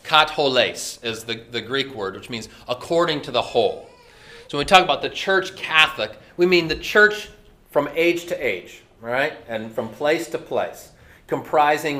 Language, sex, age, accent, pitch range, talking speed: English, male, 30-49, American, 115-155 Hz, 175 wpm